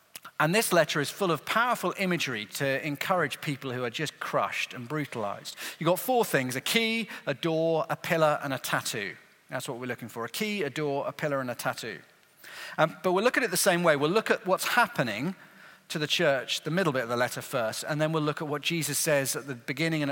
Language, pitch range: English, 120-165 Hz